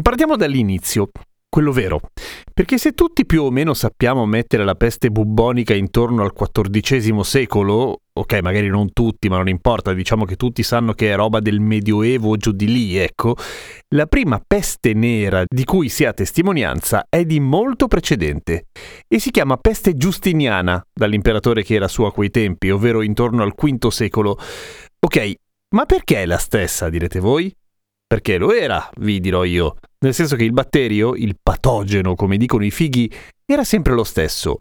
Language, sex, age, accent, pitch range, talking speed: Italian, male, 30-49, native, 105-140 Hz, 170 wpm